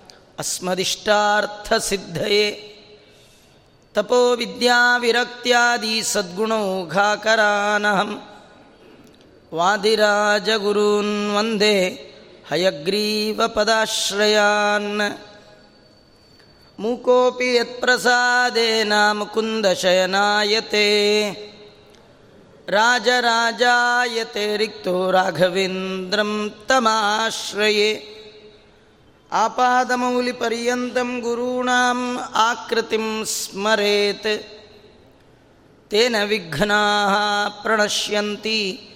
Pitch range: 205-230 Hz